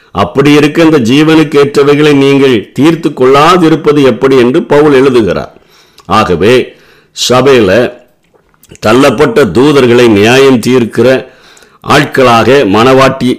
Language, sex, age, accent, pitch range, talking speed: Tamil, male, 50-69, native, 120-145 Hz, 90 wpm